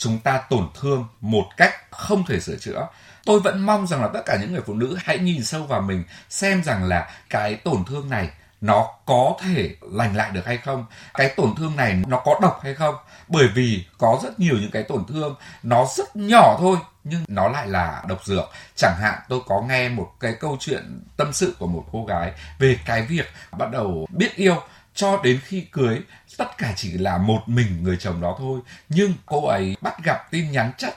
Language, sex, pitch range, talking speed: Vietnamese, male, 105-175 Hz, 220 wpm